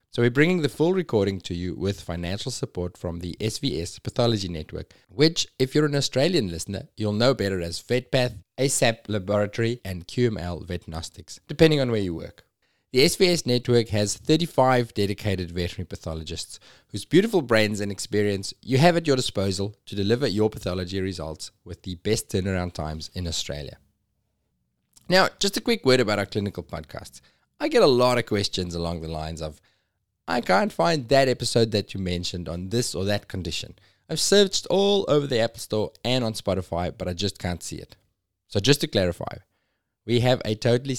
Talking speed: 180 wpm